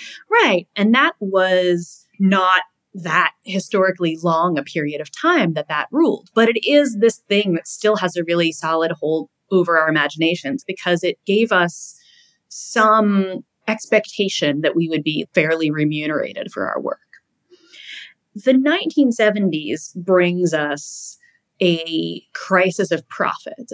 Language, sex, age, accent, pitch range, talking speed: English, female, 30-49, American, 155-210 Hz, 135 wpm